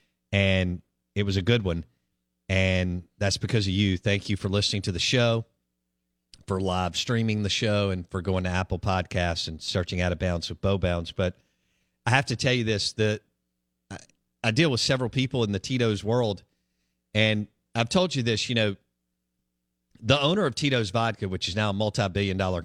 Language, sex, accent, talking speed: English, male, American, 185 wpm